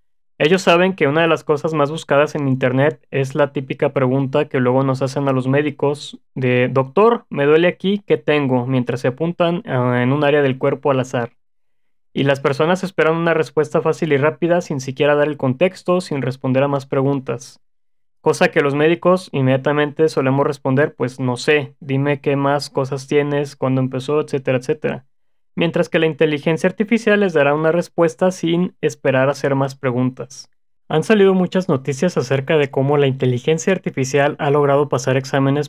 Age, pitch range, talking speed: 20-39, 135-160 Hz, 175 wpm